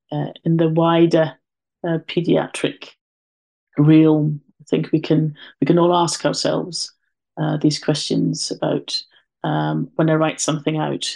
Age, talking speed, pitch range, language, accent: 30-49, 140 wpm, 150-175 Hz, English, British